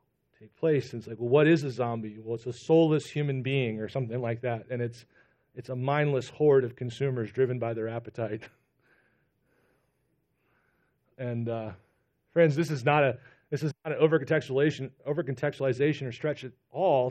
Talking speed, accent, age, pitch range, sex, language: 170 wpm, American, 40-59, 125-155 Hz, male, English